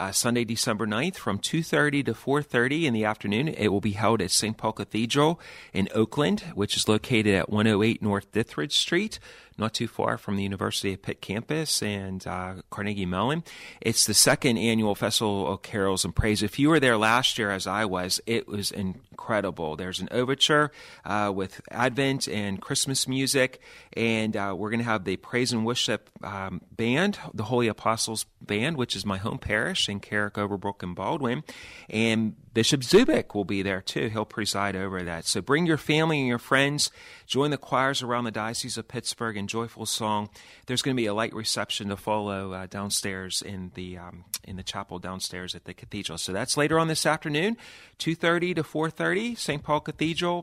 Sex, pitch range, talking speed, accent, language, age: male, 100-130 Hz, 200 wpm, American, English, 30-49